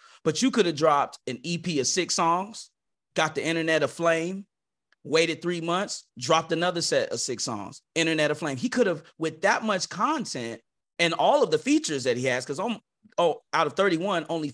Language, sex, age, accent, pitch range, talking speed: English, male, 30-49, American, 125-180 Hz, 185 wpm